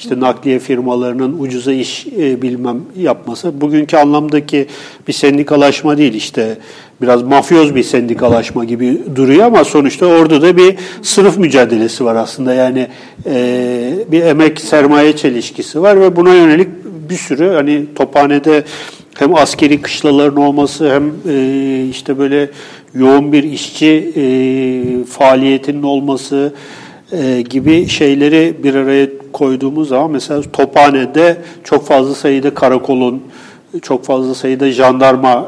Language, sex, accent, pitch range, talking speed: Turkish, male, native, 125-155 Hz, 125 wpm